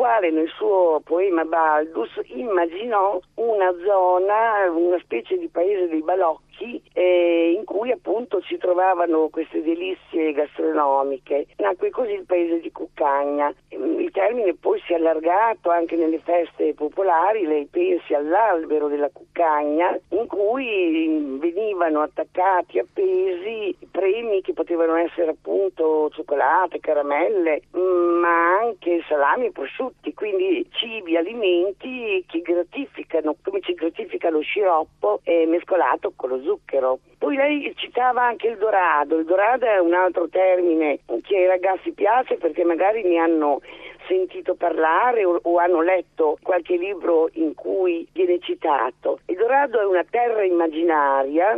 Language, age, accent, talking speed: Italian, 50-69, native, 135 wpm